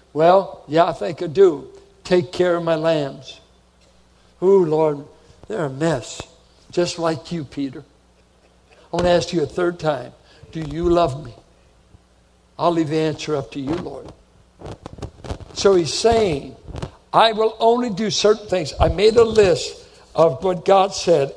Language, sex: English, male